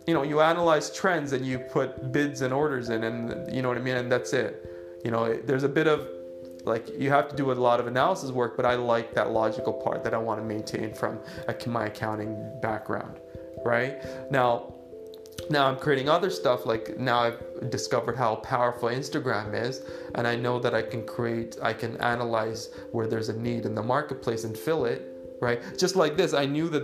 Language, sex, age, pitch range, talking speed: English, male, 20-39, 115-135 Hz, 210 wpm